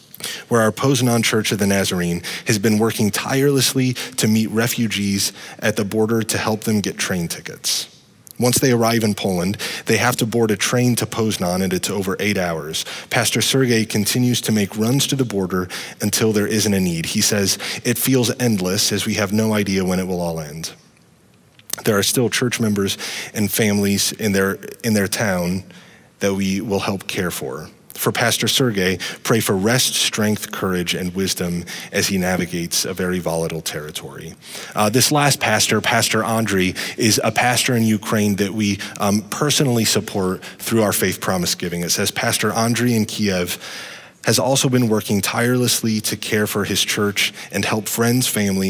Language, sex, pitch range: English, male, 95-115 Hz